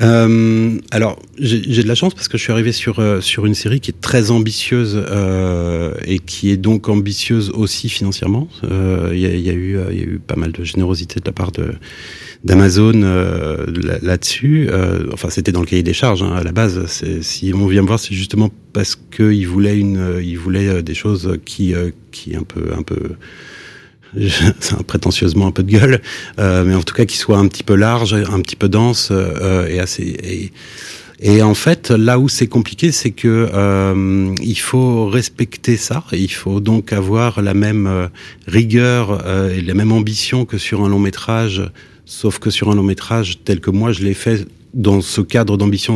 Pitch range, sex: 95-115 Hz, male